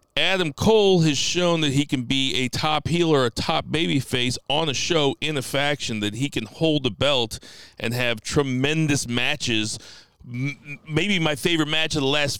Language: English